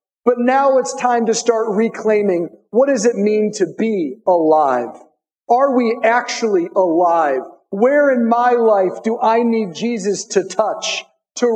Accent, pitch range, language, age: American, 185-240 Hz, English, 50-69